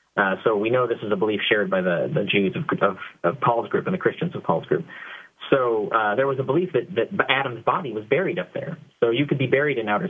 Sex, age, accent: male, 30-49, American